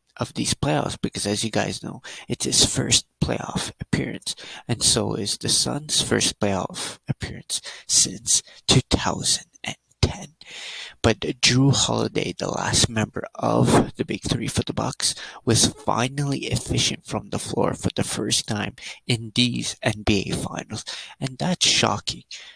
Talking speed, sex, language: 140 wpm, male, English